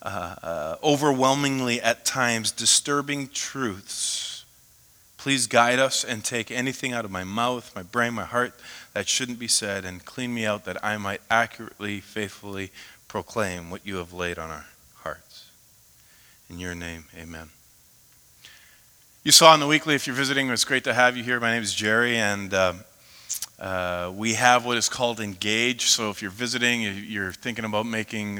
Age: 40-59